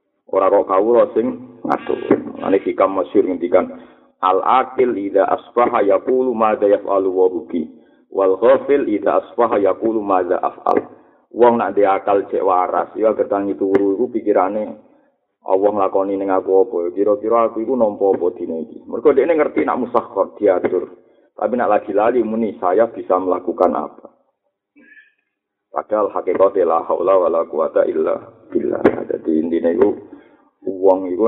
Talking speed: 145 wpm